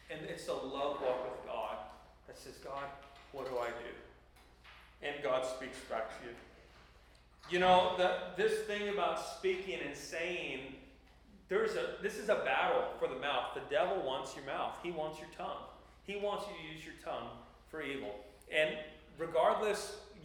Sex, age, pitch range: male, 40-59, 140-195 Hz